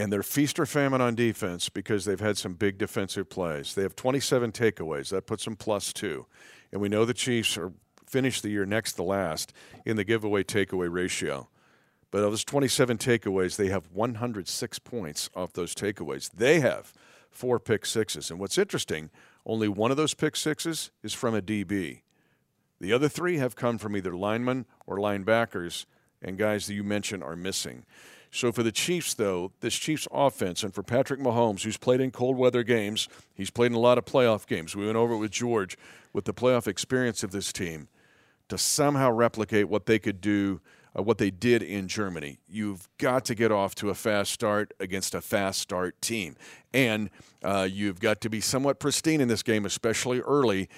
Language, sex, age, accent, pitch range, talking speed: English, male, 50-69, American, 100-125 Hz, 195 wpm